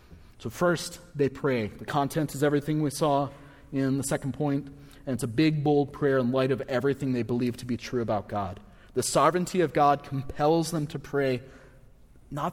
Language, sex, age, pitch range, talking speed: English, male, 30-49, 120-150 Hz, 190 wpm